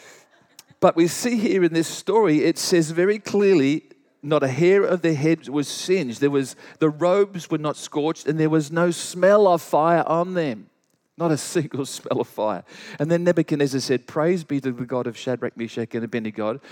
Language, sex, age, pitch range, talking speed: English, male, 40-59, 120-165 Hz, 195 wpm